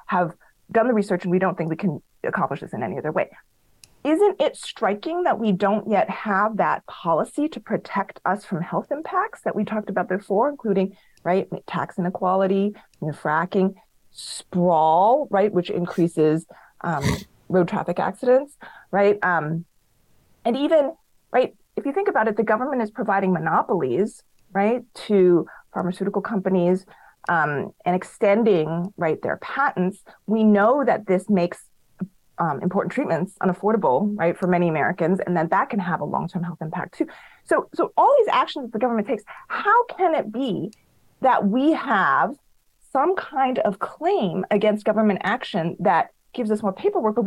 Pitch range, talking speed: 180-225 Hz, 160 wpm